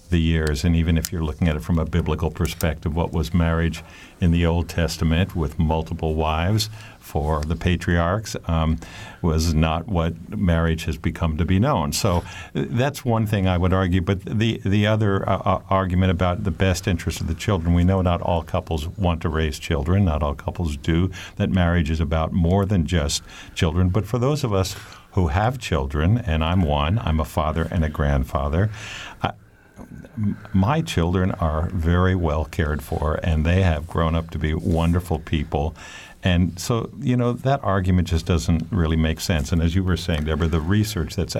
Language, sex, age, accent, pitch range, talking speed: English, male, 50-69, American, 80-95 Hz, 190 wpm